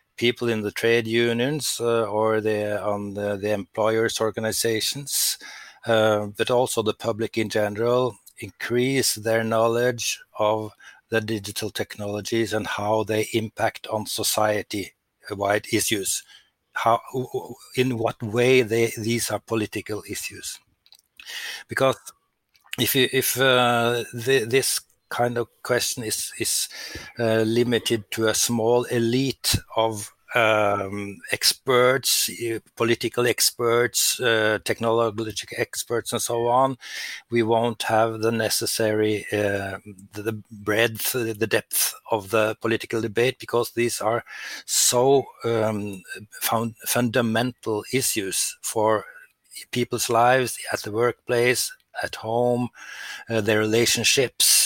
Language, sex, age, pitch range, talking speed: Finnish, male, 60-79, 110-120 Hz, 115 wpm